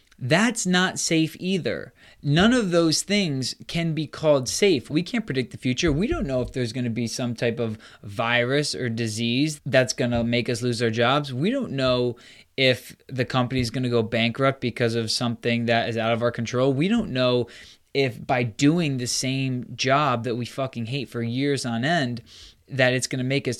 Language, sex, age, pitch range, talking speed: English, male, 20-39, 120-150 Hz, 210 wpm